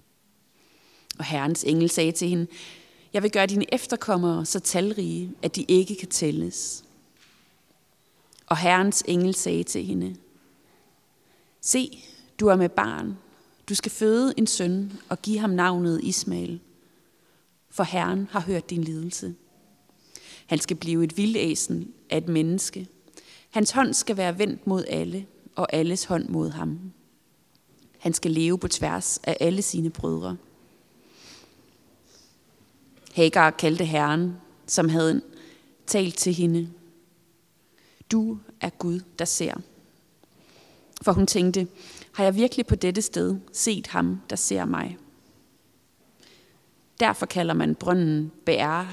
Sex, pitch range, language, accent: female, 165-200 Hz, Danish, native